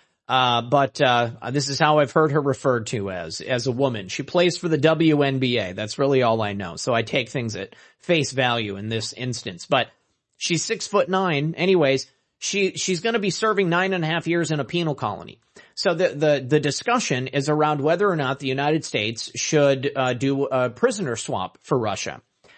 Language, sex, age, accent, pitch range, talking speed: English, male, 30-49, American, 135-195 Hz, 200 wpm